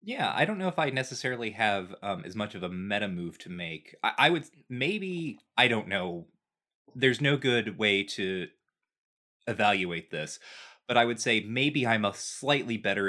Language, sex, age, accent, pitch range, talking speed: English, male, 20-39, American, 95-135 Hz, 185 wpm